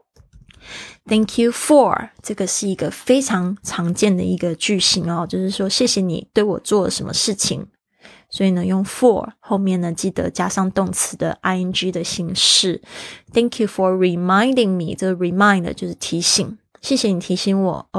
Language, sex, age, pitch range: Chinese, female, 20-39, 175-205 Hz